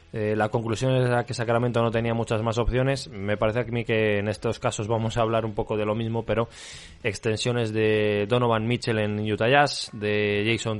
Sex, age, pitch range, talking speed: male, 20-39, 105-125 Hz, 205 wpm